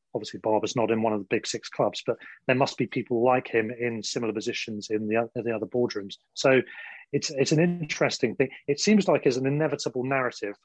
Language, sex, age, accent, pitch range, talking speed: English, male, 30-49, British, 115-140 Hz, 210 wpm